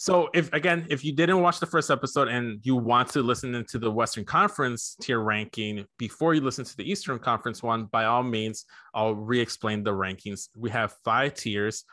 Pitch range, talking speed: 105-130 Hz, 200 wpm